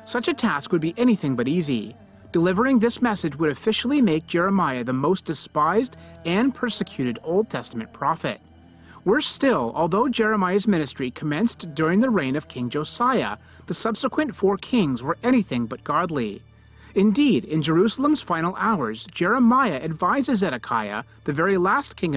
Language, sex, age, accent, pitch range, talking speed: English, male, 30-49, American, 140-230 Hz, 150 wpm